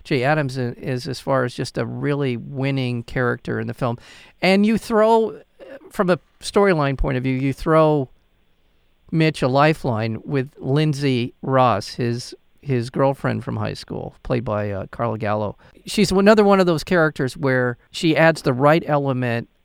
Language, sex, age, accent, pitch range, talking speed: English, male, 50-69, American, 115-150 Hz, 165 wpm